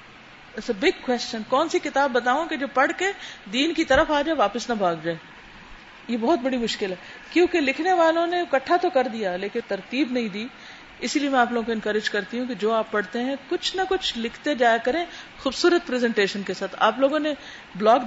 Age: 50-69